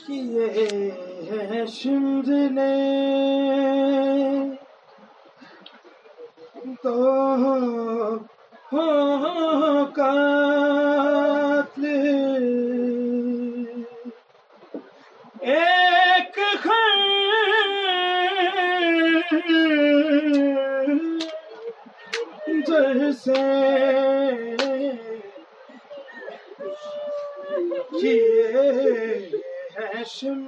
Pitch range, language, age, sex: 270-340 Hz, Urdu, 30-49, male